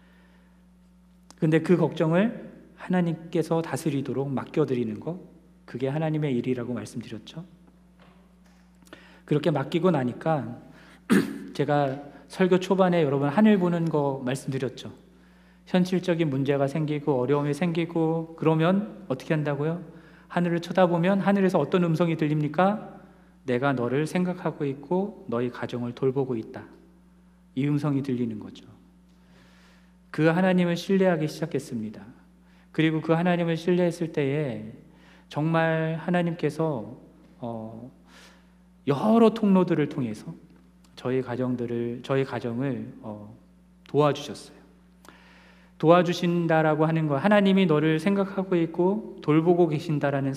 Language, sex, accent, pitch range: Korean, male, native, 140-180 Hz